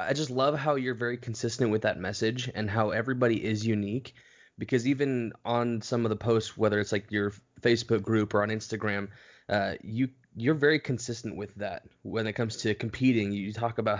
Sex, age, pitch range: male, 20-39, 105-120 Hz